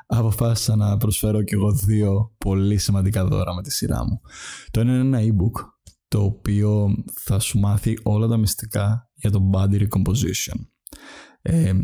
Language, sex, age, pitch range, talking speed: Greek, male, 20-39, 100-115 Hz, 155 wpm